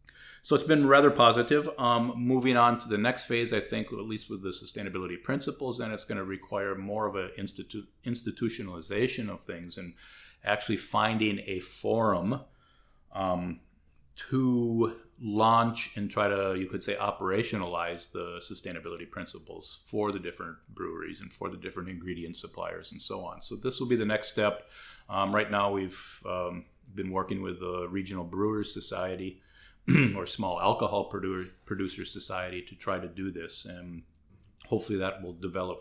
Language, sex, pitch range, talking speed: English, male, 90-110 Hz, 160 wpm